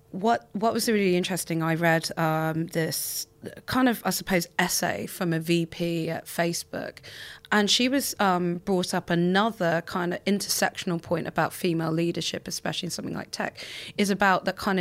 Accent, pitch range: British, 160-190 Hz